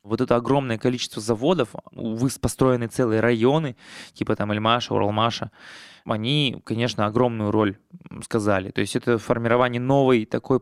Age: 20-39